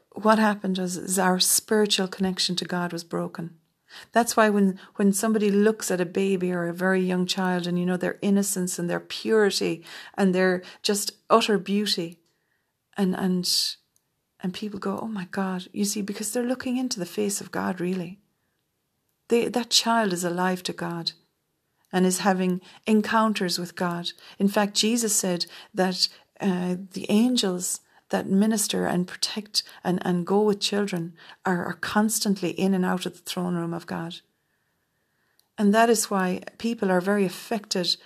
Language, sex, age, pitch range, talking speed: English, female, 40-59, 180-205 Hz, 165 wpm